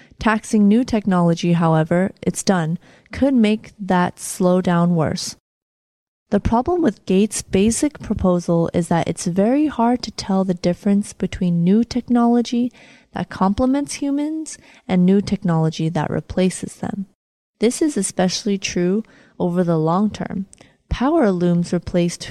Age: 20-39